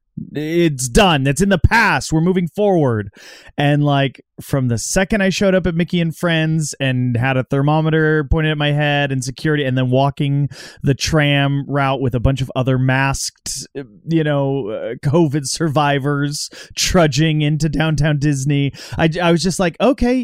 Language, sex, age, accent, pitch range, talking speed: English, male, 30-49, American, 130-175 Hz, 170 wpm